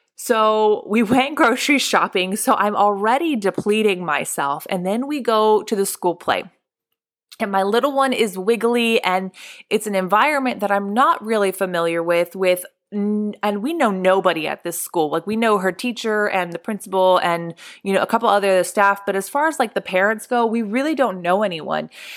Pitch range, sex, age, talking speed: 190-235 Hz, female, 20-39, 190 wpm